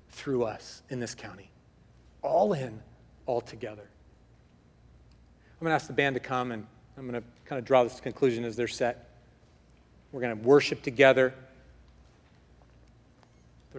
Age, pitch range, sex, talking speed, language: 40-59, 120-185 Hz, male, 150 wpm, English